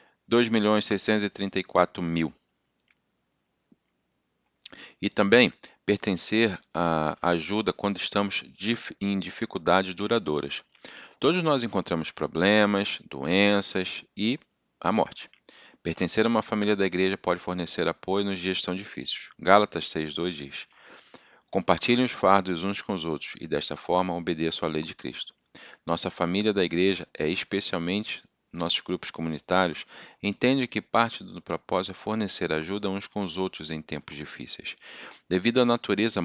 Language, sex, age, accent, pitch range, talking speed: Portuguese, male, 40-59, Brazilian, 80-100 Hz, 125 wpm